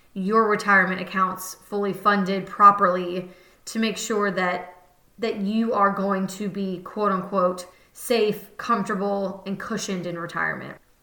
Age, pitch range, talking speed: 20-39, 190-230 Hz, 130 wpm